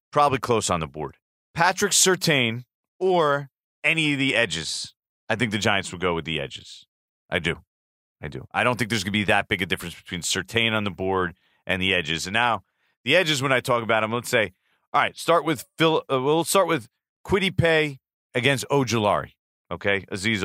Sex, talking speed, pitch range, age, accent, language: male, 205 wpm, 100-145 Hz, 40-59, American, English